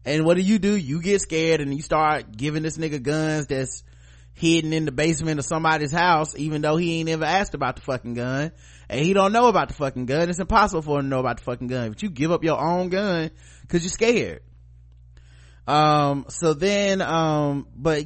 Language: English